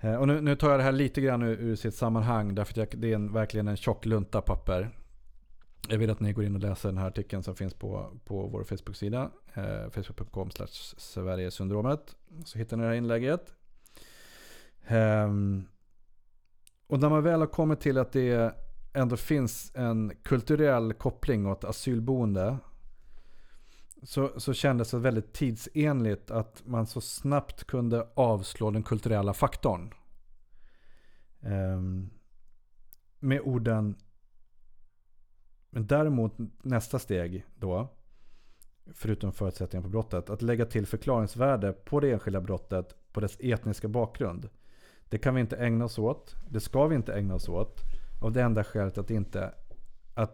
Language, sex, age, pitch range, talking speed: Swedish, male, 30-49, 100-125 Hz, 145 wpm